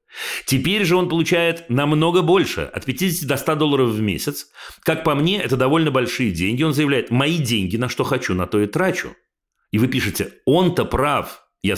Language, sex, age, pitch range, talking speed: Russian, male, 40-59, 100-145 Hz, 190 wpm